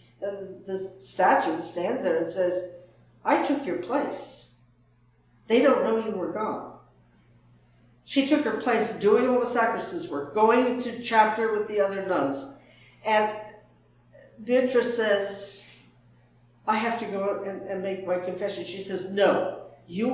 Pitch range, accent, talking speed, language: 175-230 Hz, American, 145 wpm, English